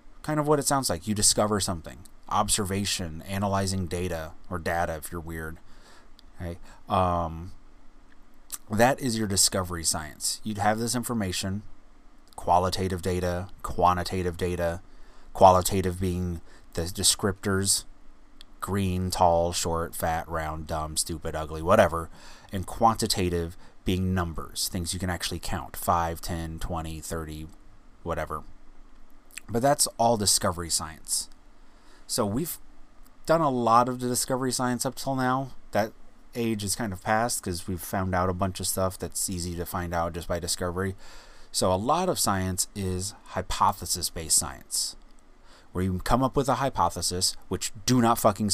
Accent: American